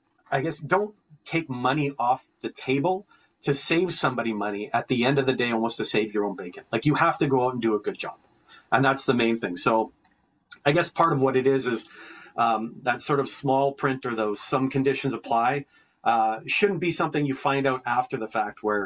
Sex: male